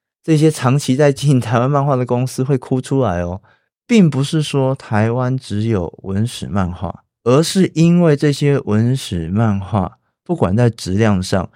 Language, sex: Chinese, male